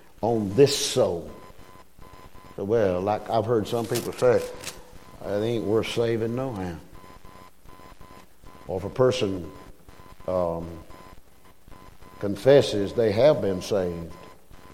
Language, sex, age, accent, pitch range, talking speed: English, male, 50-69, American, 95-145 Hz, 110 wpm